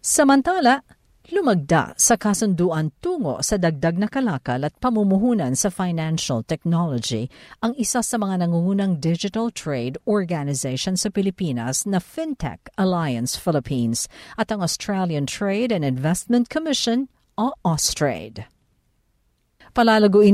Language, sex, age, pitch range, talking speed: Filipino, female, 50-69, 150-220 Hz, 110 wpm